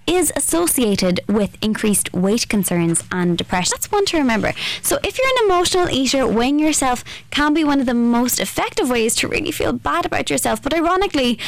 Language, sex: English, female